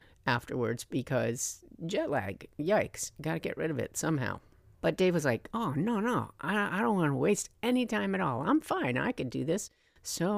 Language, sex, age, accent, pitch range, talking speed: English, female, 50-69, American, 125-160 Hz, 205 wpm